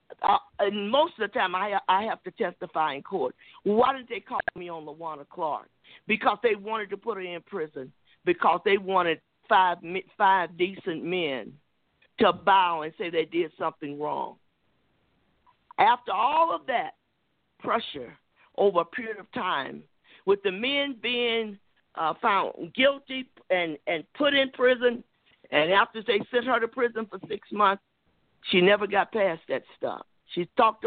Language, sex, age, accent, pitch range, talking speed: English, male, 50-69, American, 190-275 Hz, 165 wpm